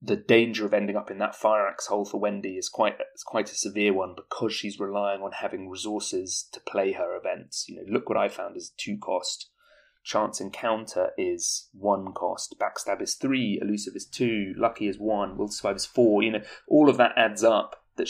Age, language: 30-49, English